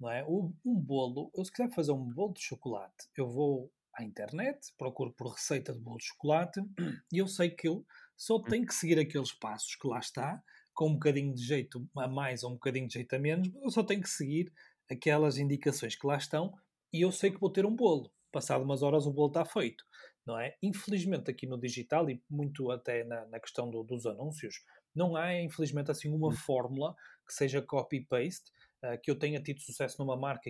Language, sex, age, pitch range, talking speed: Portuguese, male, 30-49, 130-170 Hz, 210 wpm